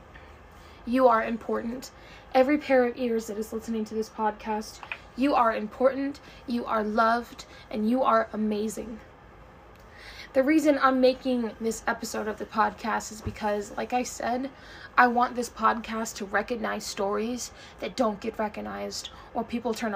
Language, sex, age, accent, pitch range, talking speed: English, female, 10-29, American, 220-265 Hz, 155 wpm